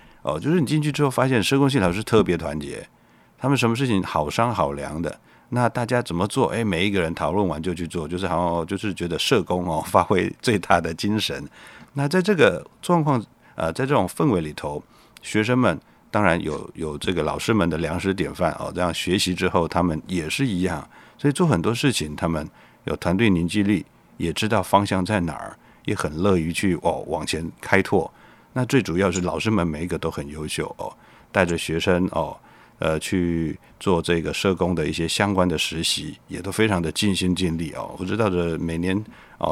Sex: male